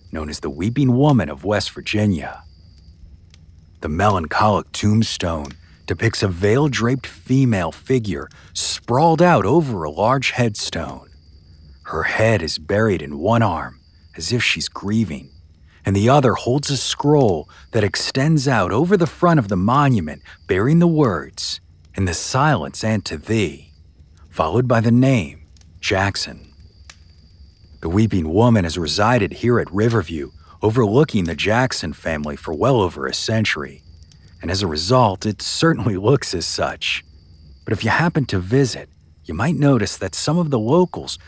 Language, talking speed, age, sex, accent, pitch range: English, 150 wpm, 50-69, male, American, 80-120 Hz